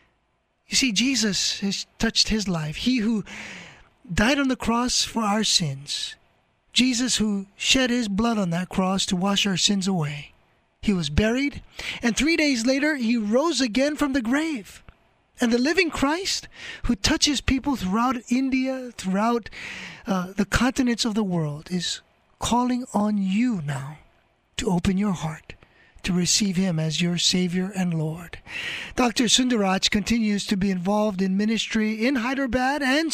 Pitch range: 185-250 Hz